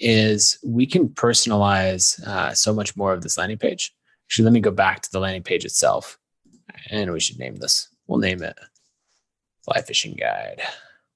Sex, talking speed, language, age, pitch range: male, 175 wpm, English, 20-39, 100-125 Hz